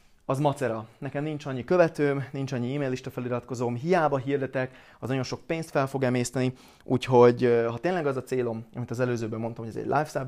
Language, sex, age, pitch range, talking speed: Hungarian, male, 30-49, 120-145 Hz, 200 wpm